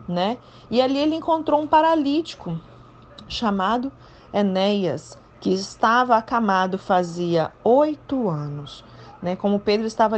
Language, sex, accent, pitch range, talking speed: Portuguese, female, Brazilian, 190-245 Hz, 110 wpm